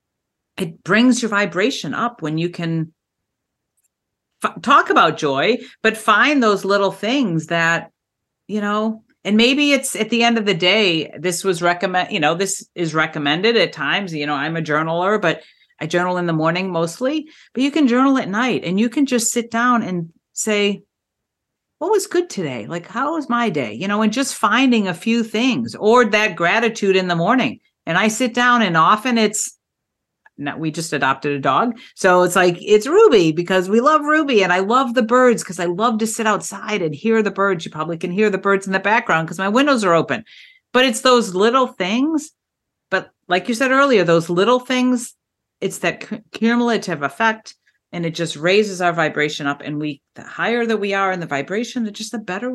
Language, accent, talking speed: English, American, 200 wpm